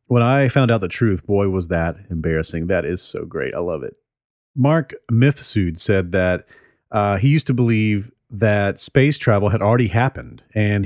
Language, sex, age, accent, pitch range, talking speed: English, male, 40-59, American, 95-120 Hz, 180 wpm